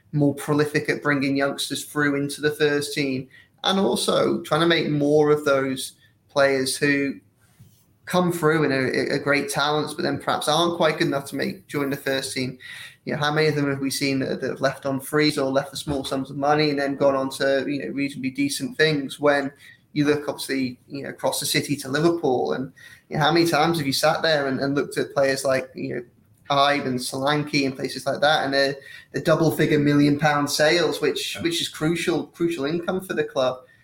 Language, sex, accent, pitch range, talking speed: English, male, British, 135-155 Hz, 220 wpm